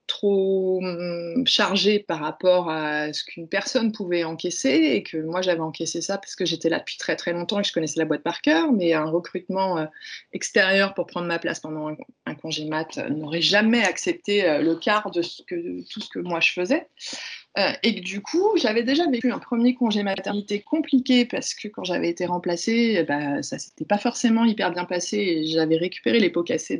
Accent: French